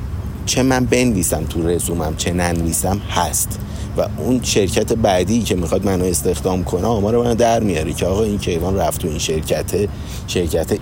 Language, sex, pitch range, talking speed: Persian, male, 85-105 Hz, 170 wpm